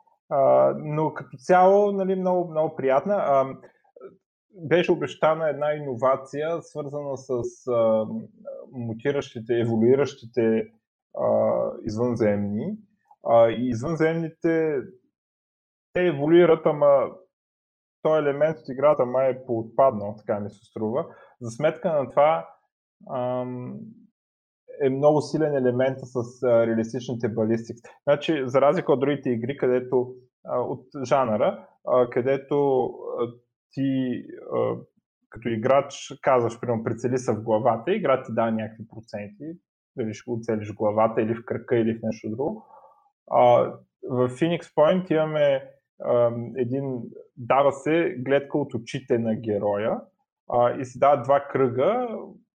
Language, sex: Bulgarian, male